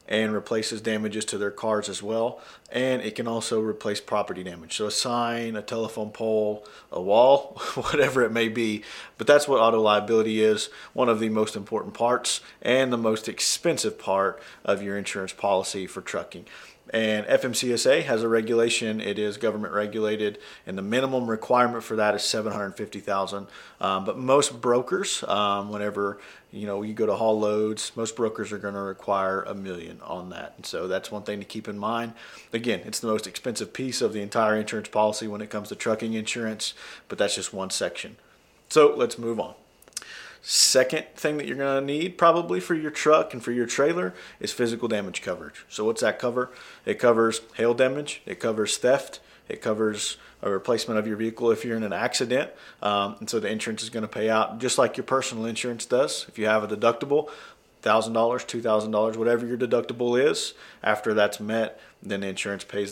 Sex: male